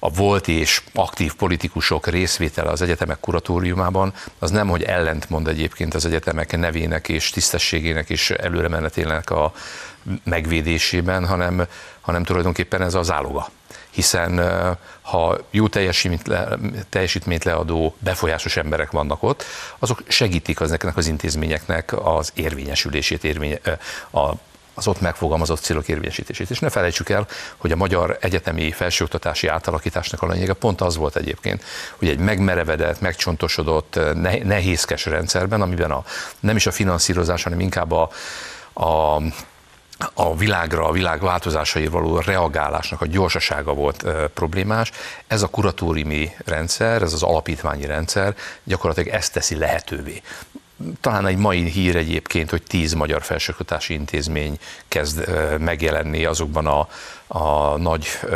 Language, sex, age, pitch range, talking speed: Hungarian, male, 60-79, 80-95 Hz, 130 wpm